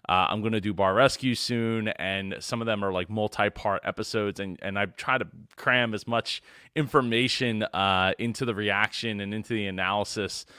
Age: 20-39